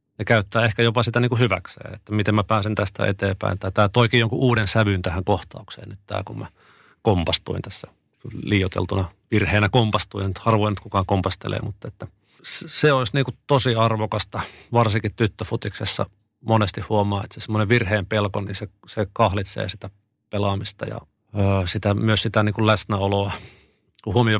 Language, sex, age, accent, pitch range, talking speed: Finnish, male, 30-49, native, 100-115 Hz, 155 wpm